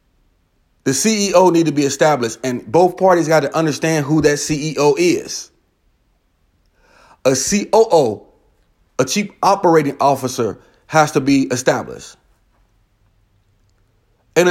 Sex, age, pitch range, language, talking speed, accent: male, 30-49, 135-175 Hz, English, 110 wpm, American